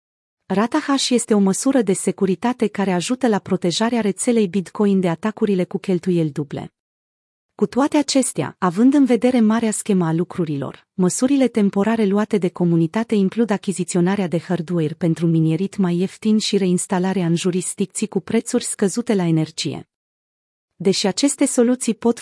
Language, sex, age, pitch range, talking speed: Romanian, female, 30-49, 175-225 Hz, 145 wpm